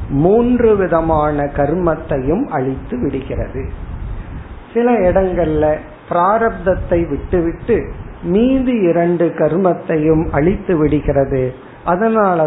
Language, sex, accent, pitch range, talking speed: Tamil, male, native, 150-195 Hz, 75 wpm